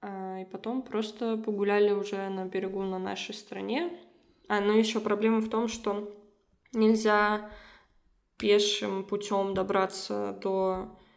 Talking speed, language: 120 wpm, Russian